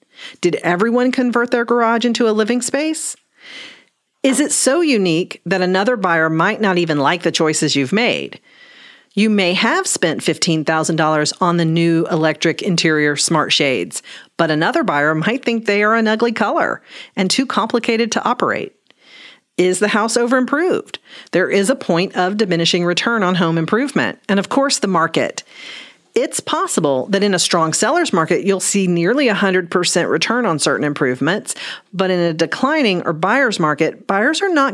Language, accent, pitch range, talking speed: English, American, 165-235 Hz, 170 wpm